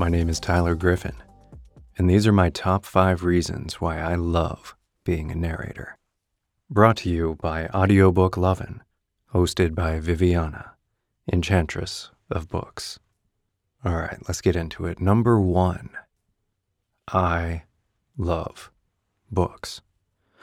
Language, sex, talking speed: English, male, 120 wpm